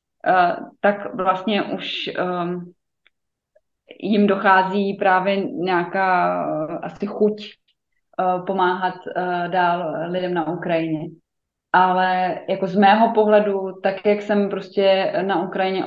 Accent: native